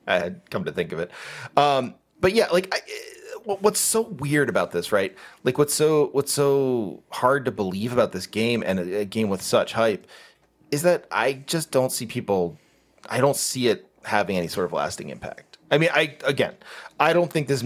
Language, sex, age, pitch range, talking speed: English, male, 30-49, 100-140 Hz, 205 wpm